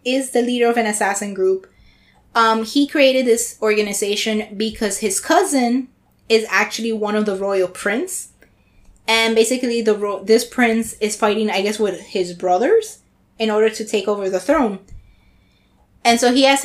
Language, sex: English, female